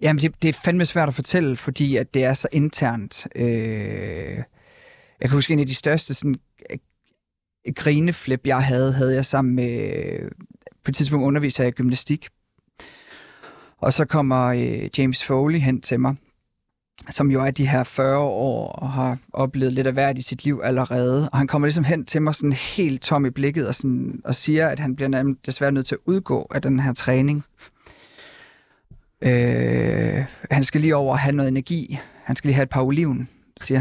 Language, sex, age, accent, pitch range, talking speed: Danish, male, 30-49, native, 130-155 Hz, 190 wpm